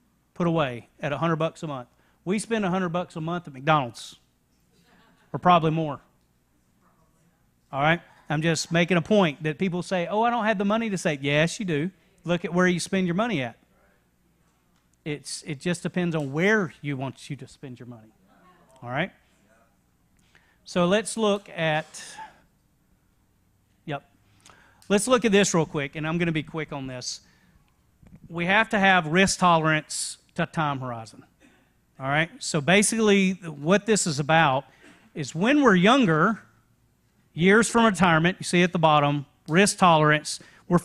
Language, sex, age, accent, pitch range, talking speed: English, male, 40-59, American, 150-185 Hz, 165 wpm